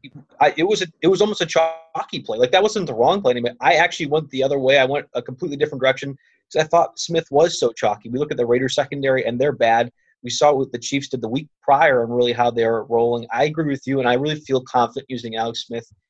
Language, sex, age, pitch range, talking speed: English, male, 30-49, 120-160 Hz, 270 wpm